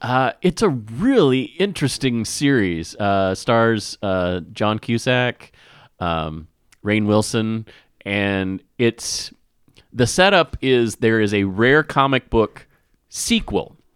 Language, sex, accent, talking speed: English, male, American, 110 wpm